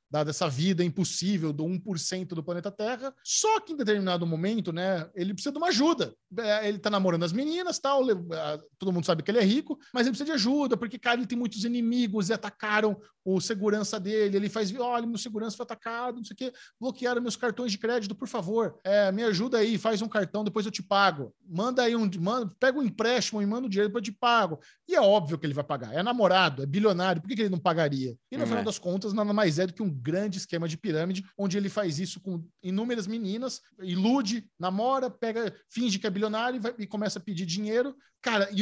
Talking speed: 225 wpm